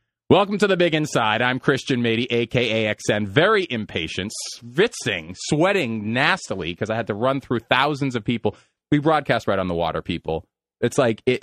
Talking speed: 180 wpm